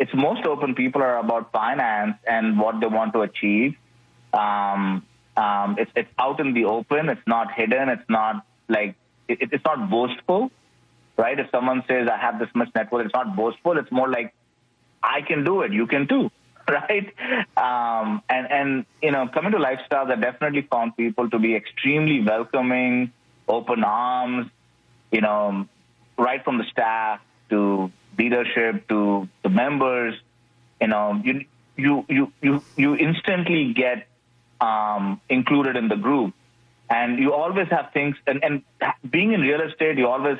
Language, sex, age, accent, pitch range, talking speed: English, male, 30-49, Indian, 110-130 Hz, 160 wpm